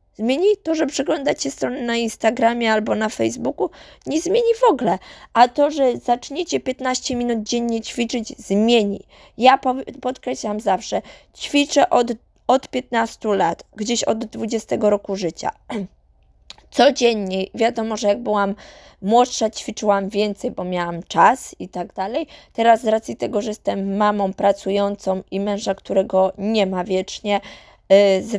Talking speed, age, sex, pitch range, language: 135 wpm, 20-39, female, 195-235 Hz, Polish